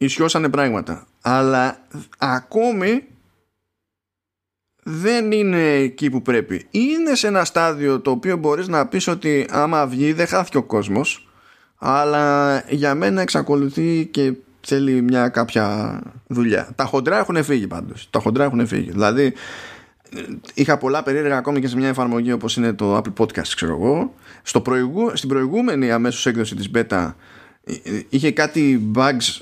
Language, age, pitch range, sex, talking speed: Greek, 20-39, 105-145 Hz, male, 145 wpm